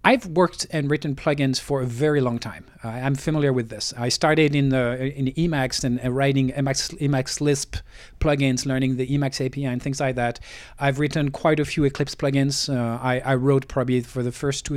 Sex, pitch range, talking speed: male, 130-160 Hz, 200 wpm